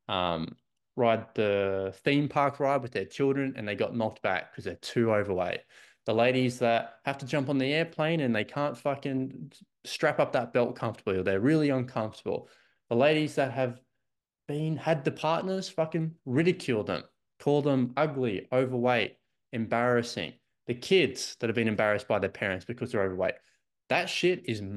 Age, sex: 20-39, male